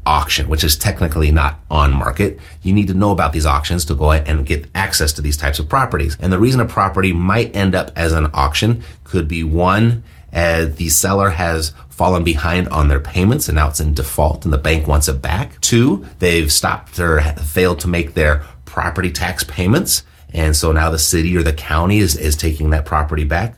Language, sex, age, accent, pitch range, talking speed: English, male, 30-49, American, 80-100 Hz, 215 wpm